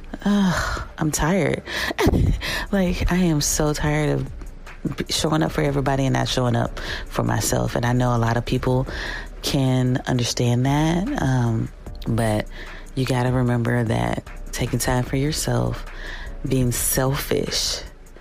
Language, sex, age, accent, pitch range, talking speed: English, female, 30-49, American, 120-145 Hz, 140 wpm